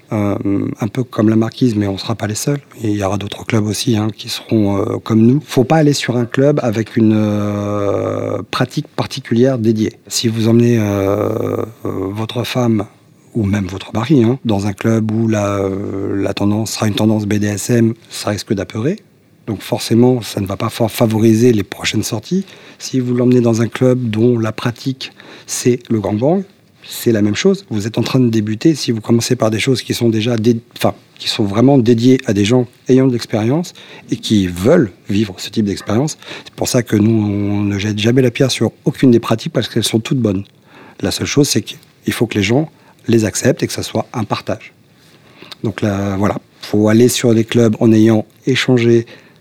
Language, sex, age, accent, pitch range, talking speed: French, male, 40-59, French, 105-125 Hz, 215 wpm